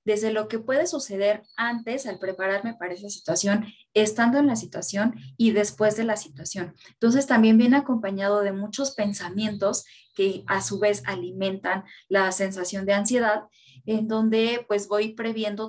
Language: Spanish